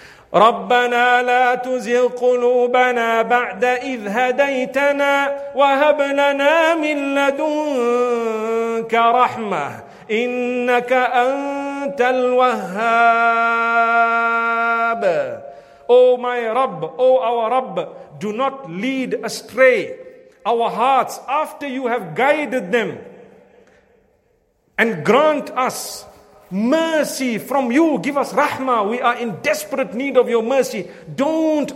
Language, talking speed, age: English, 100 wpm, 50-69